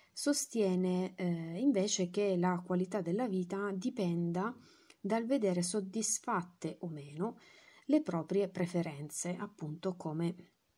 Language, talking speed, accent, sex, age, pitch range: Italian, 105 wpm, native, female, 30-49, 175-205 Hz